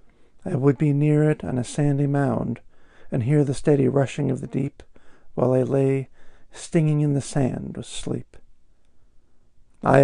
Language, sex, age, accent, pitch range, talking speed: English, male, 50-69, American, 130-165 Hz, 160 wpm